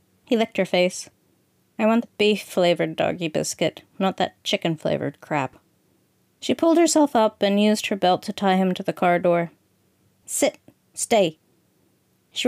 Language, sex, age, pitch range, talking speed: English, female, 30-49, 185-215 Hz, 155 wpm